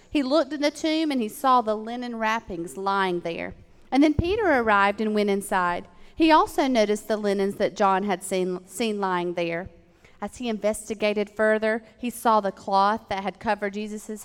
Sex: female